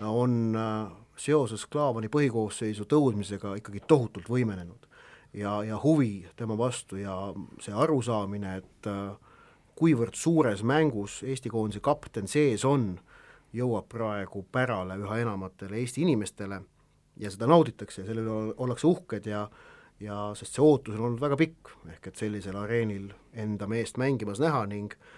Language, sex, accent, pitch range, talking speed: English, male, Finnish, 105-135 Hz, 140 wpm